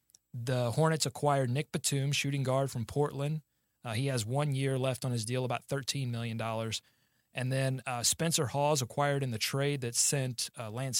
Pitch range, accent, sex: 120-145 Hz, American, male